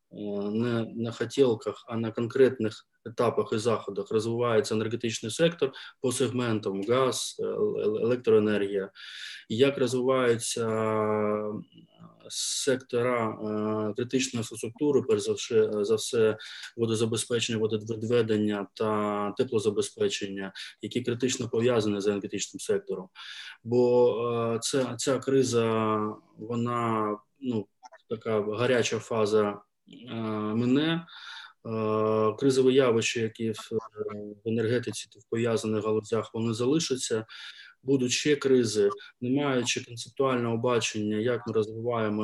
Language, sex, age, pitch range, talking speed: Ukrainian, male, 20-39, 110-125 Hz, 90 wpm